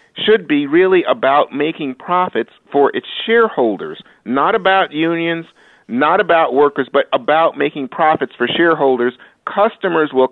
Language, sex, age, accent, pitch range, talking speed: English, male, 50-69, American, 130-185 Hz, 135 wpm